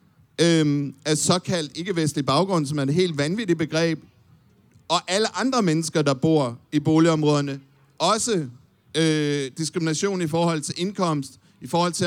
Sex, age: male, 50-69